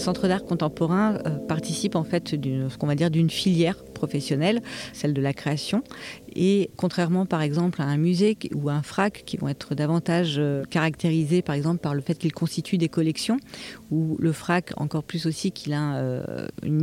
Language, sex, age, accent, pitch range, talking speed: English, female, 40-59, French, 150-185 Hz, 170 wpm